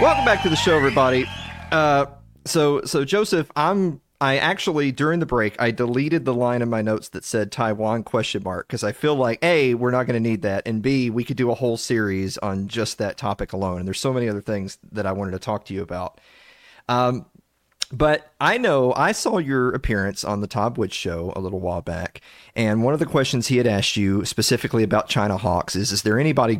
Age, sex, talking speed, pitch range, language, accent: 30-49, male, 230 wpm, 95-130 Hz, English, American